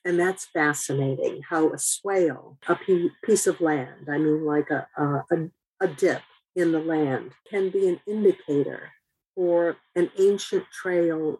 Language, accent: English, American